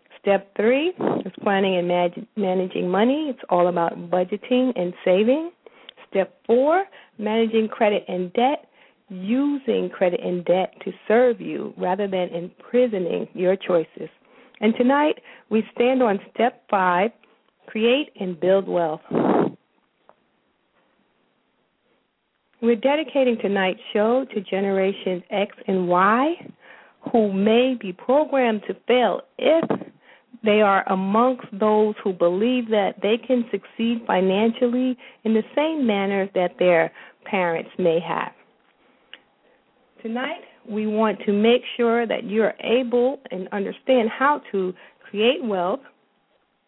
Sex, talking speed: female, 120 wpm